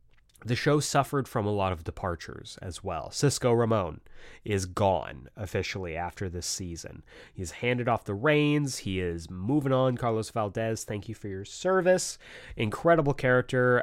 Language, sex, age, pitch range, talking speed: English, male, 30-49, 95-130 Hz, 155 wpm